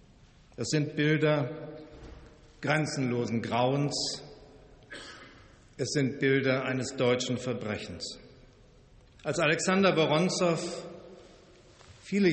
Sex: male